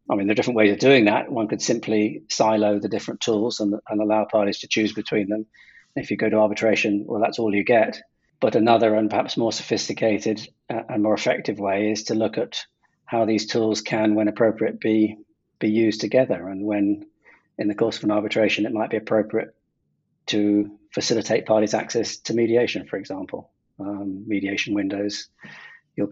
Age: 40-59